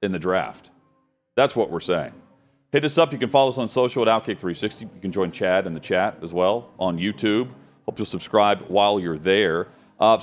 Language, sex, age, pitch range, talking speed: English, male, 40-59, 105-145 Hz, 210 wpm